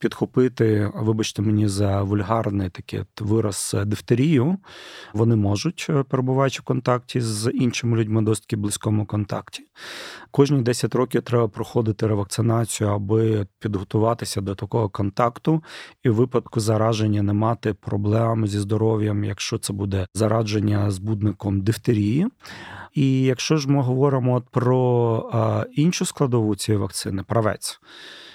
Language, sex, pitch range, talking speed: Ukrainian, male, 105-125 Hz, 120 wpm